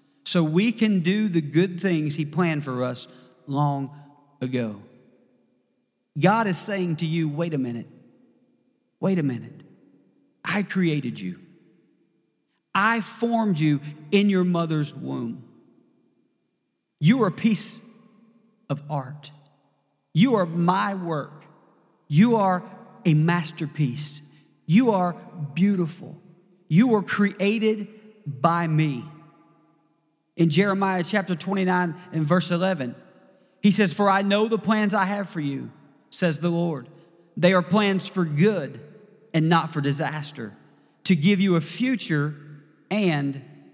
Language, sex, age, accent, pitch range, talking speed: English, male, 40-59, American, 145-185 Hz, 125 wpm